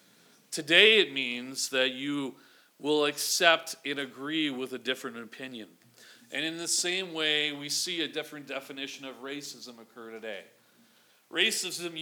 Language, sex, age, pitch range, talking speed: English, male, 40-59, 140-175 Hz, 140 wpm